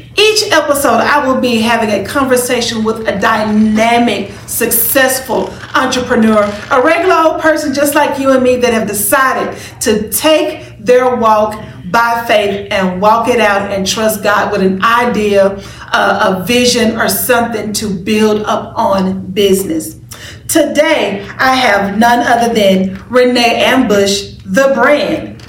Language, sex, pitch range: English, female, 210-285 Hz